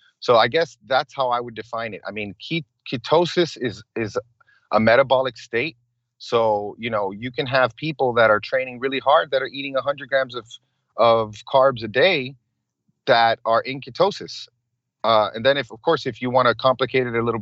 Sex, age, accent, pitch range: male, 30-49, American, 105-125 Hz